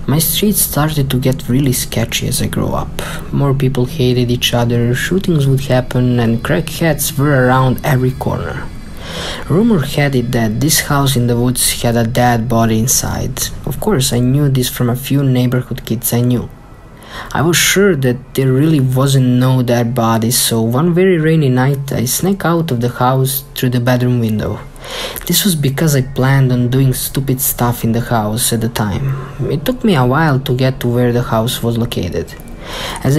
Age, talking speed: 20-39, 190 wpm